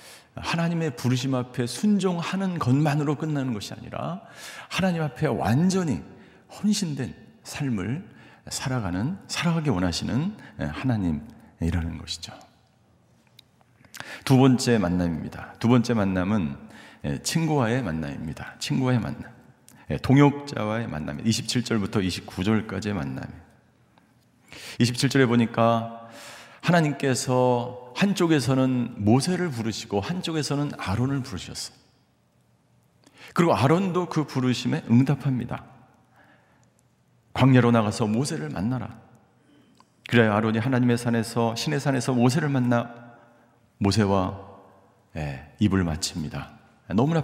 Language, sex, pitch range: Korean, male, 100-140 Hz